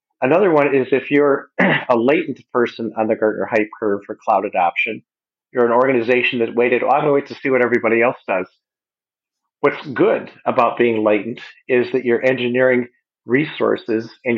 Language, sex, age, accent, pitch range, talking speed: English, male, 40-59, American, 110-130 Hz, 170 wpm